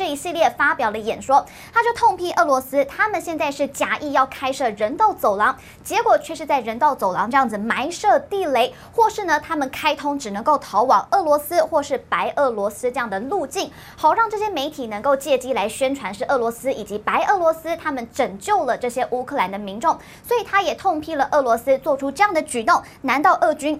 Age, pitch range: 20-39, 240-340 Hz